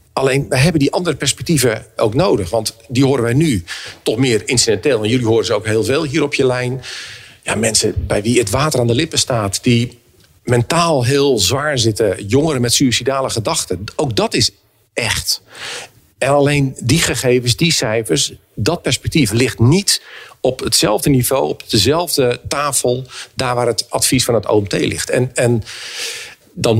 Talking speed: 170 wpm